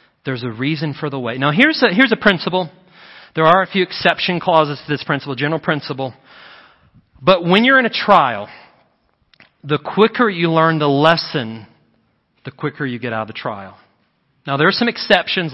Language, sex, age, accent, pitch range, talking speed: English, male, 40-59, American, 135-175 Hz, 185 wpm